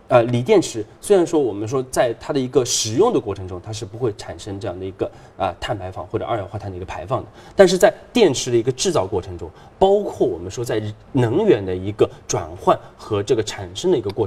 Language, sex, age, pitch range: Chinese, male, 20-39, 100-140 Hz